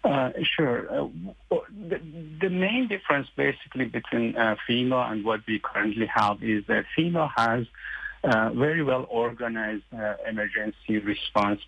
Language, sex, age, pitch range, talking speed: English, male, 50-69, 105-125 Hz, 145 wpm